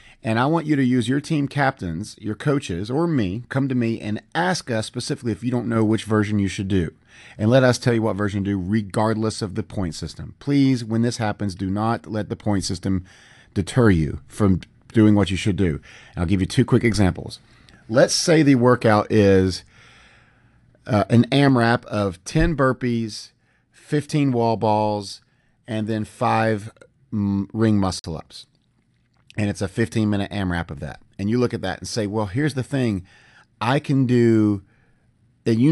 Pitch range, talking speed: 105-125 Hz, 185 wpm